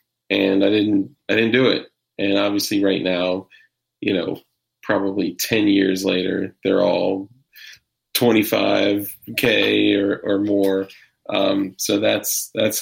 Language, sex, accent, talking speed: English, male, American, 130 wpm